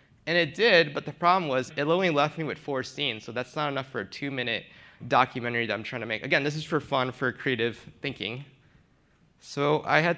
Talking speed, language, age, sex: 225 wpm, English, 20-39, male